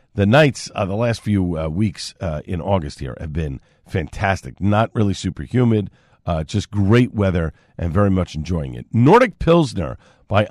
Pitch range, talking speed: 90-120 Hz, 175 wpm